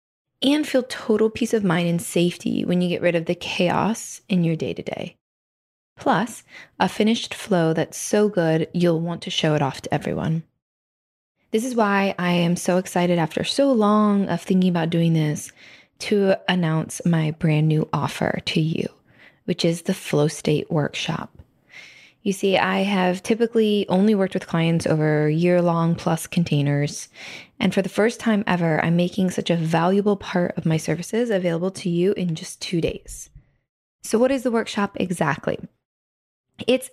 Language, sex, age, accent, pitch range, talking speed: English, female, 20-39, American, 165-210 Hz, 175 wpm